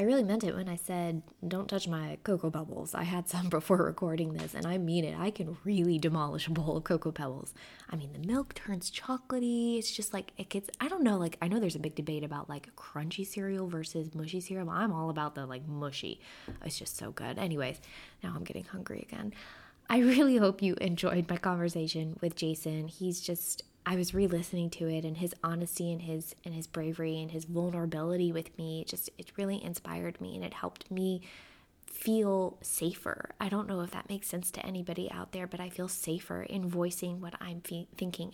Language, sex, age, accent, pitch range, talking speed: English, female, 20-39, American, 165-195 Hz, 210 wpm